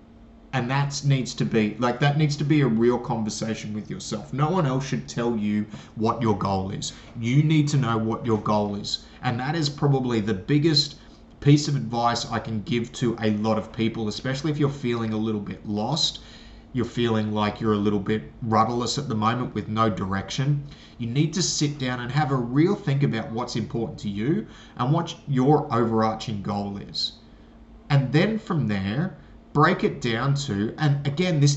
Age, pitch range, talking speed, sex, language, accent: 30-49, 110-145 Hz, 200 wpm, male, English, Australian